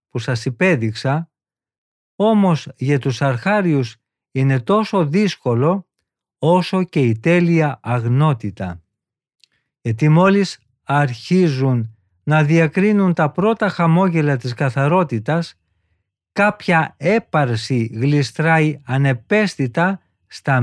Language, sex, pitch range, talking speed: Greek, male, 120-175 Hz, 85 wpm